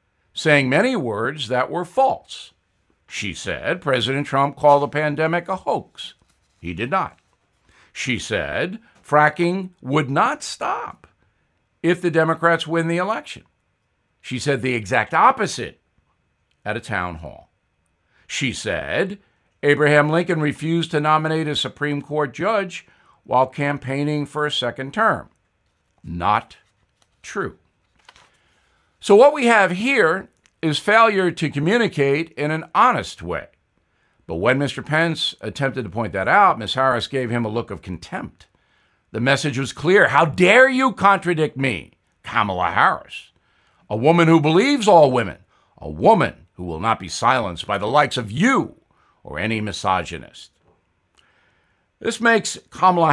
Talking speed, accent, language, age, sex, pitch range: 140 wpm, American, English, 60-79, male, 120-165 Hz